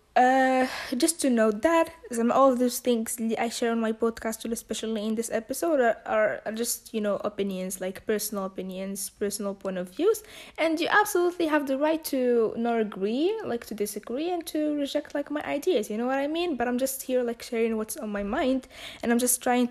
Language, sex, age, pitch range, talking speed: English, female, 20-39, 205-265 Hz, 205 wpm